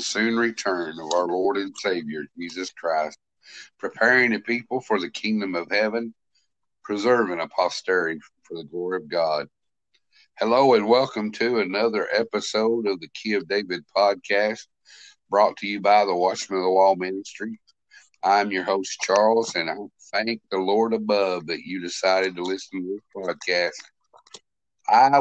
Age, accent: 60-79, American